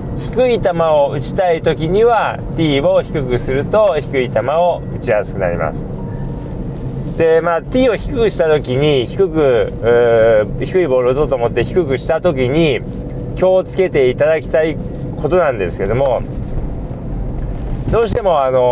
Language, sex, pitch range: Japanese, male, 135-180 Hz